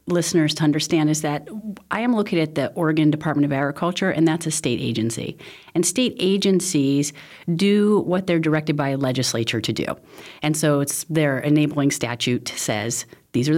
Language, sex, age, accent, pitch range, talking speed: English, female, 30-49, American, 135-175 Hz, 175 wpm